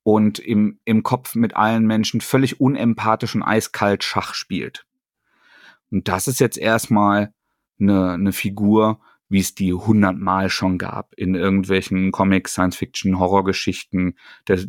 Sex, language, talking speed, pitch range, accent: male, German, 140 wpm, 100-120 Hz, German